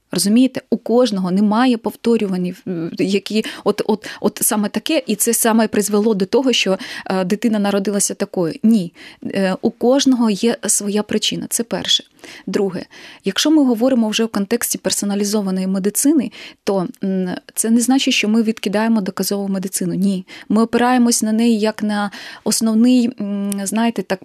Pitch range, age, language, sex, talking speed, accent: 200-245 Hz, 20-39, Ukrainian, female, 140 wpm, native